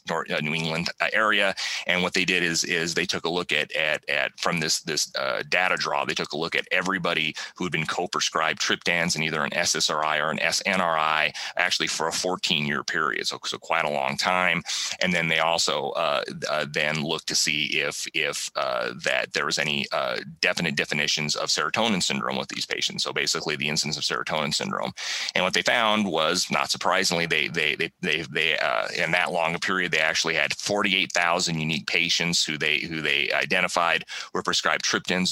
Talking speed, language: 200 wpm, Italian